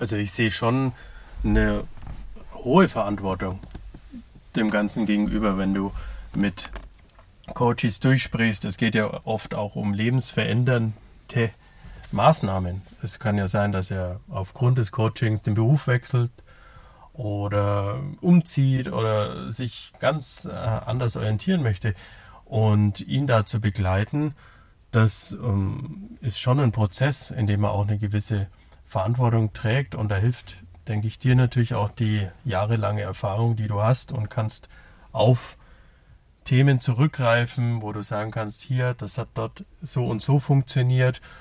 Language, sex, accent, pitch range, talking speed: German, male, German, 100-125 Hz, 135 wpm